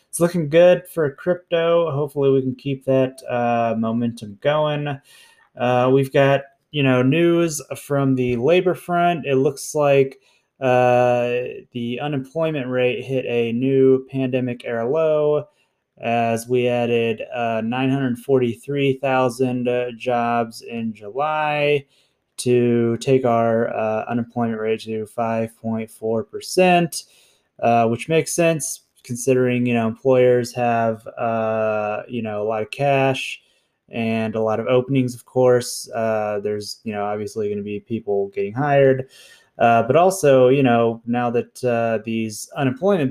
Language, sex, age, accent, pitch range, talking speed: English, male, 20-39, American, 115-140 Hz, 135 wpm